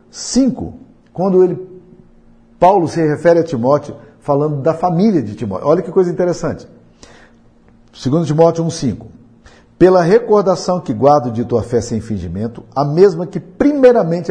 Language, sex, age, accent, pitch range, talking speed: Portuguese, male, 50-69, Brazilian, 120-185 Hz, 140 wpm